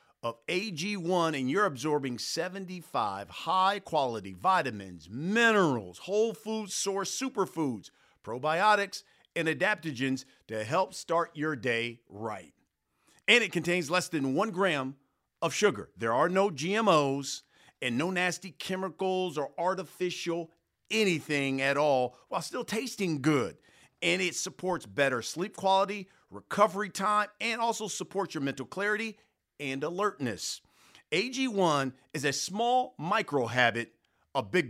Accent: American